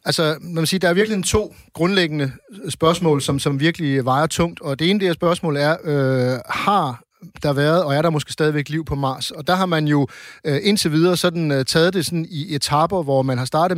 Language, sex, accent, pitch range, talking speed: Danish, male, native, 135-165 Hz, 225 wpm